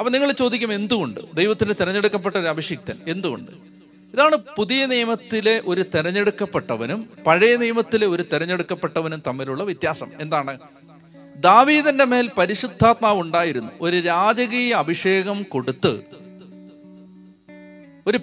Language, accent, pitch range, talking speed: Malayalam, native, 160-215 Hz, 100 wpm